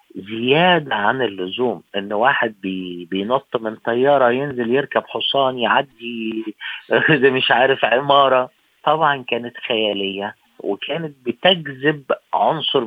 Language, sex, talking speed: Arabic, male, 105 wpm